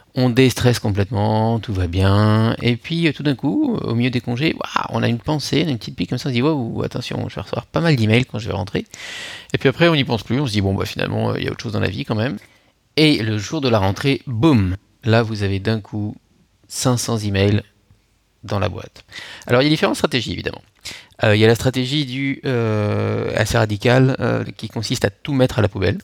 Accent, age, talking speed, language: French, 30-49, 250 wpm, French